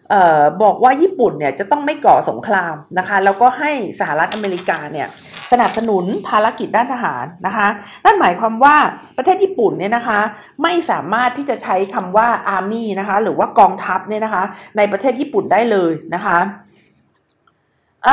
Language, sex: Thai, female